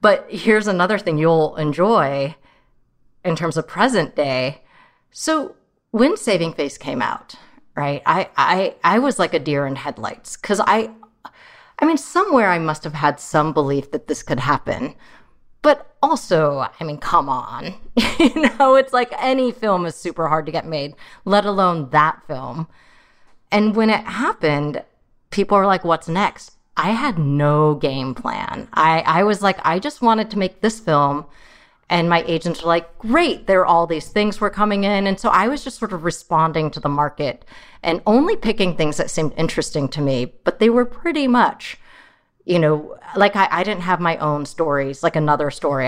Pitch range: 150-215 Hz